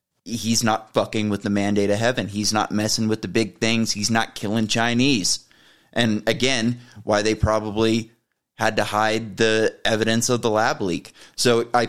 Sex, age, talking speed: male, 30-49, 175 wpm